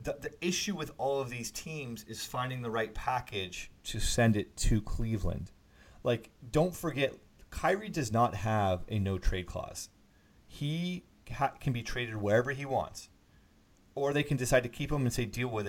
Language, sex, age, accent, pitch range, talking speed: English, male, 30-49, American, 100-120 Hz, 175 wpm